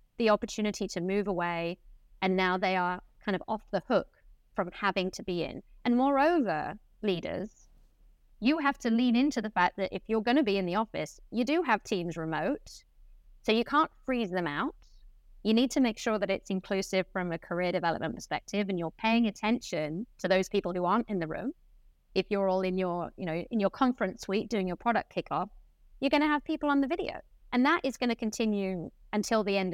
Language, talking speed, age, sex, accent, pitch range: English, 215 wpm, 30-49, female, British, 190-240 Hz